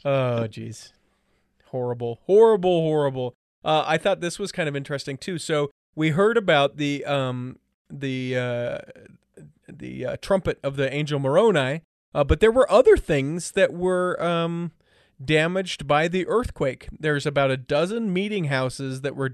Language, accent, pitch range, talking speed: English, American, 130-165 Hz, 155 wpm